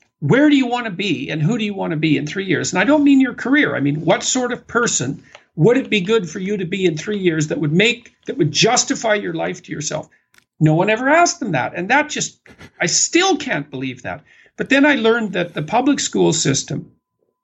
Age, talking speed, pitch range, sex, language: 50-69, 250 wpm, 155-225 Hz, male, English